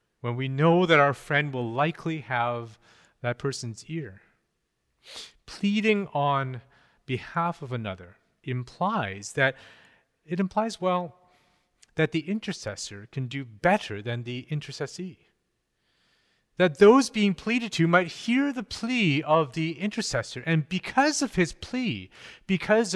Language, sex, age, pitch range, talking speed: English, male, 30-49, 120-185 Hz, 130 wpm